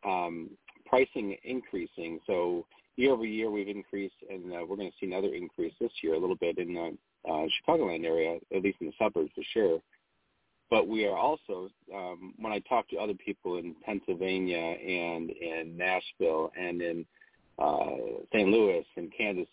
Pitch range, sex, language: 90-135 Hz, male, English